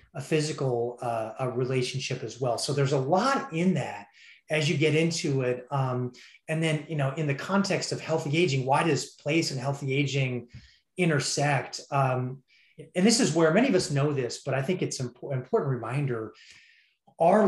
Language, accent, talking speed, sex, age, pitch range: English, American, 190 wpm, male, 30-49, 130-160 Hz